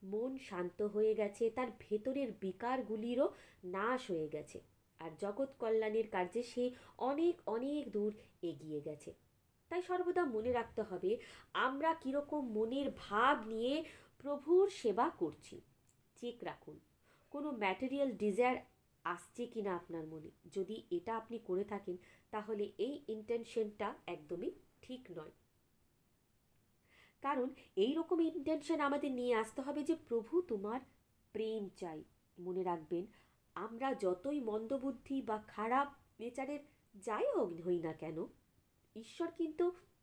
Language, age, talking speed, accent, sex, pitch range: Bengali, 20-39, 120 wpm, native, female, 195-275 Hz